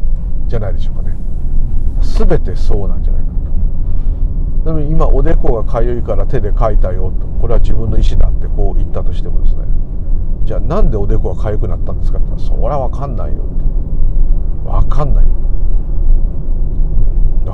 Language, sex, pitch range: Japanese, male, 80-100 Hz